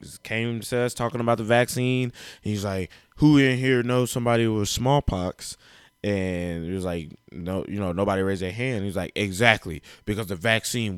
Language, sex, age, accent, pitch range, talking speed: English, male, 20-39, American, 100-125 Hz, 180 wpm